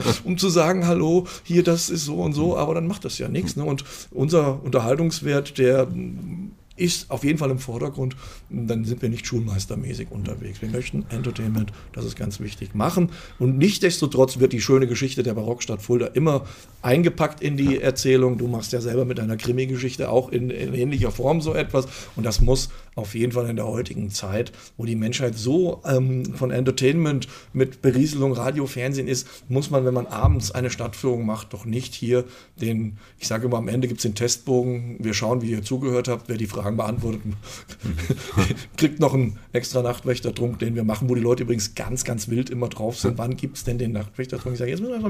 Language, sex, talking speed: German, male, 200 wpm